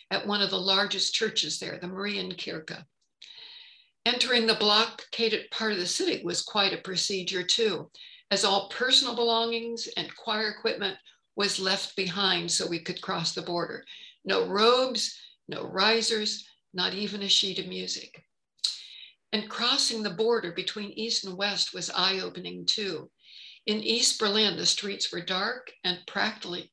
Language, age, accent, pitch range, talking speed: English, 60-79, American, 180-225 Hz, 155 wpm